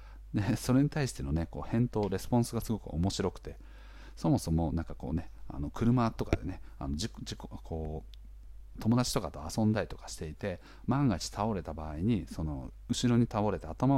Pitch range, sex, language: 85-120 Hz, male, Japanese